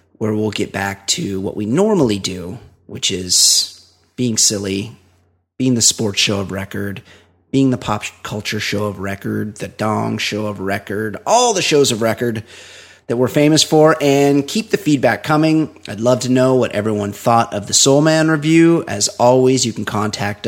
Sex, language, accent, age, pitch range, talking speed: male, English, American, 30-49, 105-135 Hz, 180 wpm